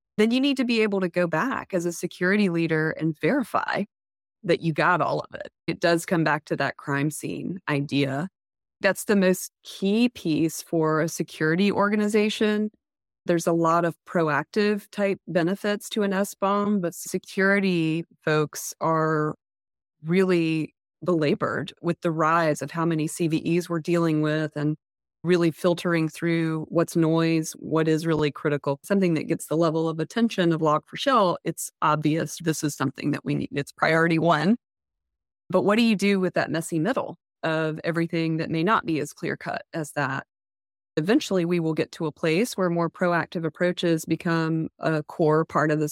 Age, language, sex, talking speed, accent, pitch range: 20-39, English, female, 175 wpm, American, 155-185 Hz